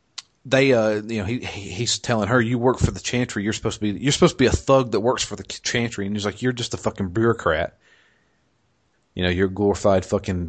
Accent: American